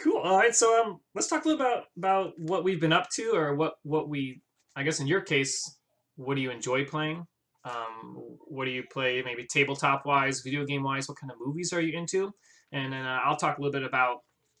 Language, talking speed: English, 225 wpm